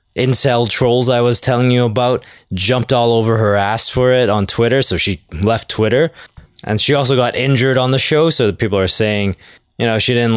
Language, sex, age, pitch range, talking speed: English, male, 20-39, 110-130 Hz, 215 wpm